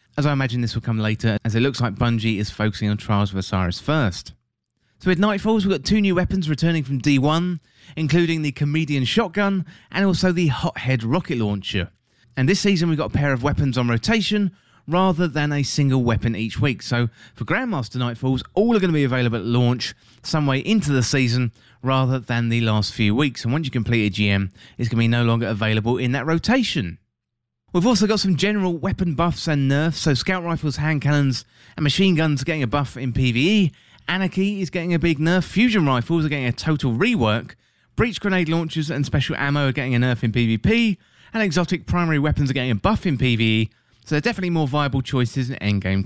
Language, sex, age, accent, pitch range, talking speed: English, male, 30-49, British, 120-170 Hz, 215 wpm